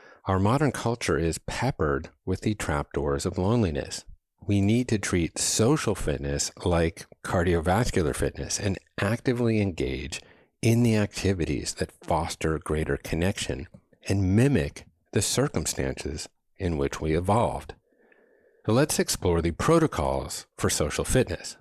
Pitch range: 75-105 Hz